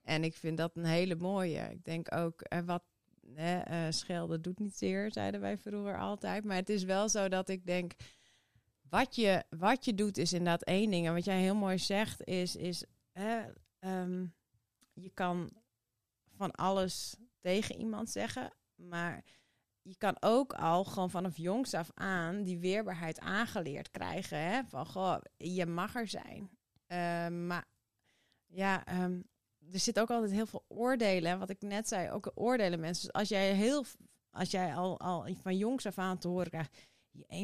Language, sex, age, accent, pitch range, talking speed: Dutch, female, 30-49, Dutch, 165-200 Hz, 180 wpm